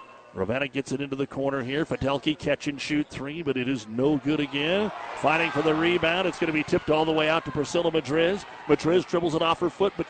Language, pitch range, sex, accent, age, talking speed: English, 140-170 Hz, male, American, 50-69, 245 wpm